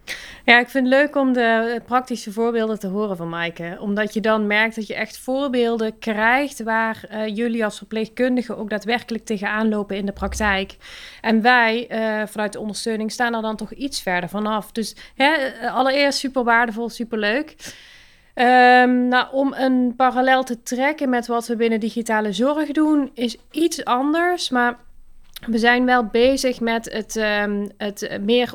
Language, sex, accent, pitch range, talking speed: Dutch, female, Dutch, 205-245 Hz, 160 wpm